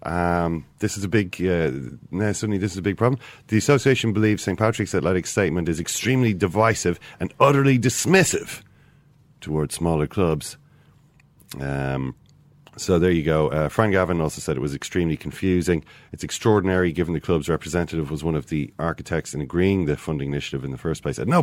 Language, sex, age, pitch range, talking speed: English, male, 40-59, 80-110 Hz, 180 wpm